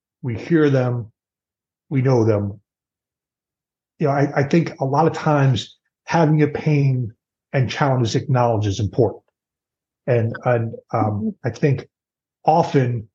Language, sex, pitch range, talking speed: English, male, 115-145 Hz, 135 wpm